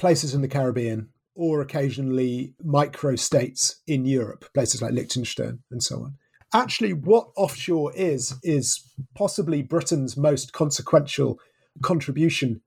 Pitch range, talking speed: 130-160 Hz, 125 wpm